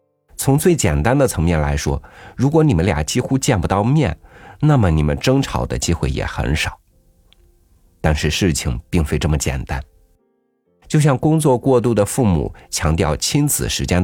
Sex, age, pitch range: male, 50-69, 75-105 Hz